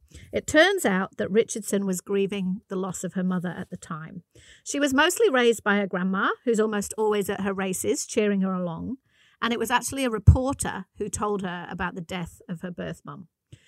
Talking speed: 205 wpm